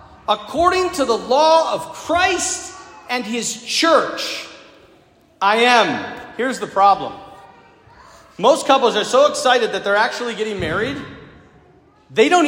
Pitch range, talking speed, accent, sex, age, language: 240-335 Hz, 125 wpm, American, male, 40-59, English